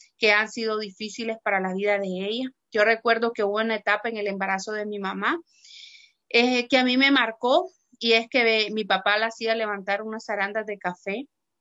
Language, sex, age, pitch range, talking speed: Spanish, female, 30-49, 205-240 Hz, 200 wpm